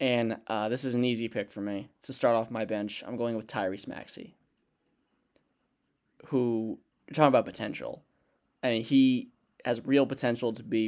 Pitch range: 105-125 Hz